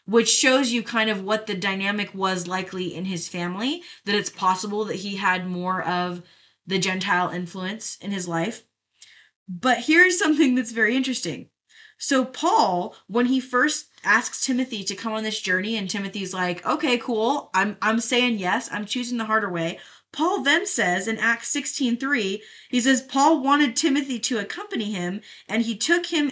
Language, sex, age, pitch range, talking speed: English, female, 20-39, 185-250 Hz, 175 wpm